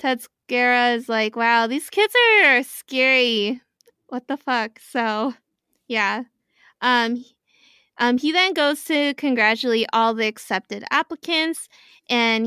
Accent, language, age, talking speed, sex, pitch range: American, English, 20-39, 120 wpm, female, 225-275 Hz